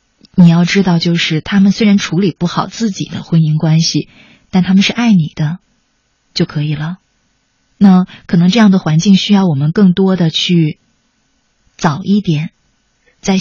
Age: 30-49